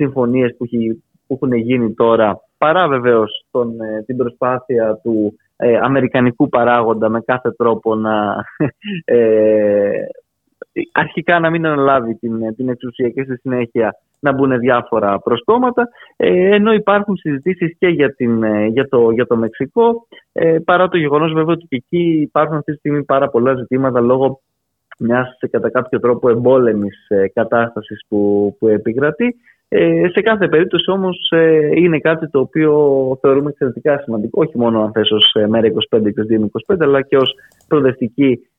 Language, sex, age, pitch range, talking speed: Greek, male, 20-39, 115-155 Hz, 140 wpm